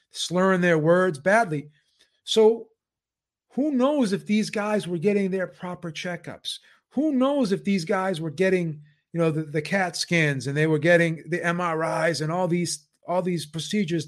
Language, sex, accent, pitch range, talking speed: English, male, American, 155-195 Hz, 170 wpm